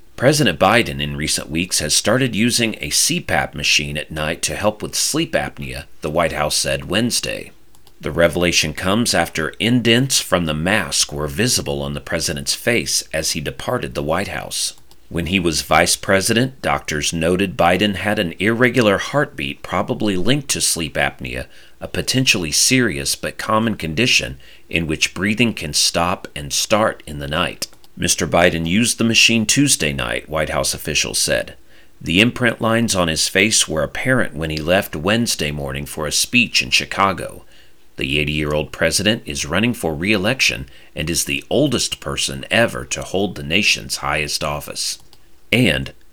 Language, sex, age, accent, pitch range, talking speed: English, male, 40-59, American, 75-110 Hz, 165 wpm